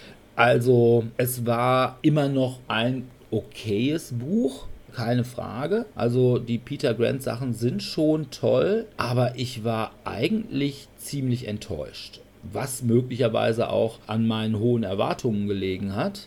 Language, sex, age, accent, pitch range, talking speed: German, male, 40-59, German, 110-135 Hz, 120 wpm